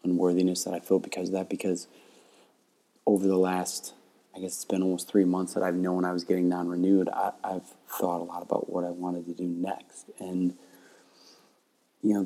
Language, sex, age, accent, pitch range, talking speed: English, male, 20-39, American, 90-95 Hz, 195 wpm